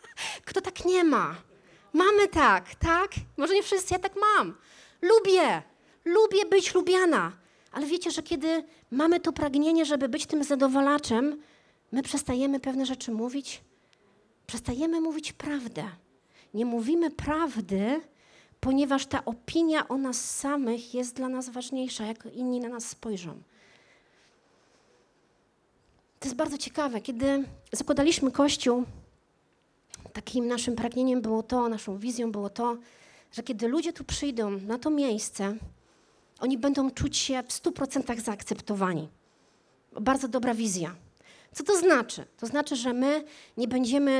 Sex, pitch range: female, 235-320 Hz